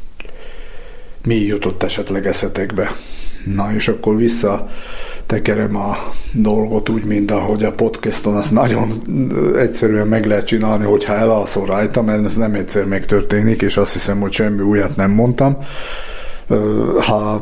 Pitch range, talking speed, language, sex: 100-115 Hz, 140 wpm, Hungarian, male